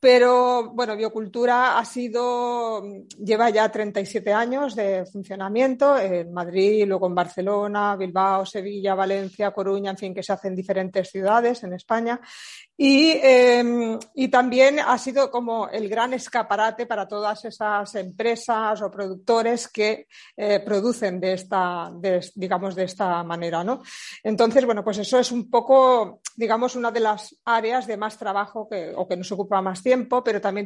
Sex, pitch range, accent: female, 195-230 Hz, Spanish